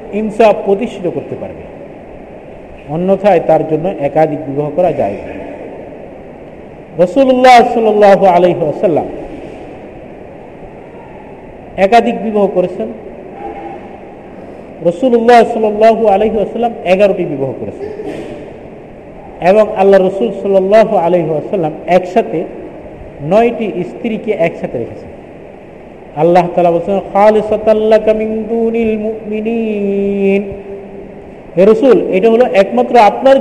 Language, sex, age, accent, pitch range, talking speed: Bengali, male, 50-69, native, 175-220 Hz, 45 wpm